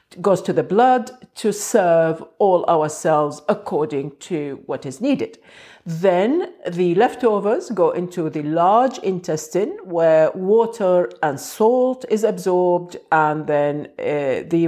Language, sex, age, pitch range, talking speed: English, female, 50-69, 165-230 Hz, 130 wpm